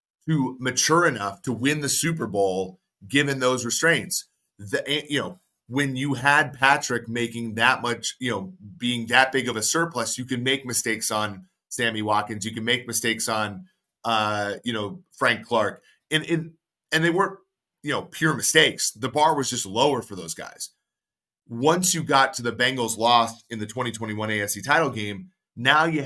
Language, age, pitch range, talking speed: English, 30-49, 115-140 Hz, 180 wpm